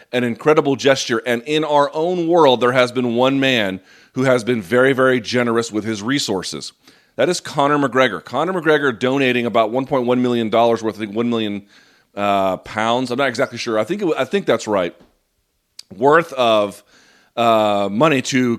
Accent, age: American, 40-59